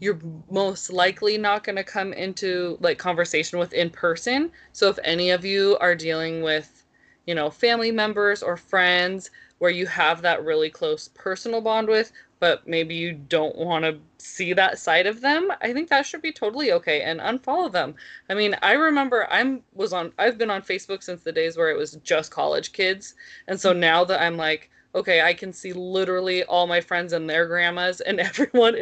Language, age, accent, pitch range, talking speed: English, 20-39, American, 170-235 Hz, 200 wpm